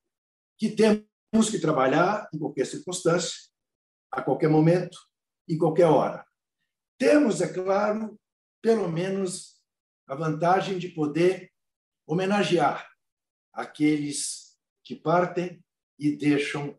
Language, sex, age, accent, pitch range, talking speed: Portuguese, male, 60-79, Brazilian, 125-175 Hz, 100 wpm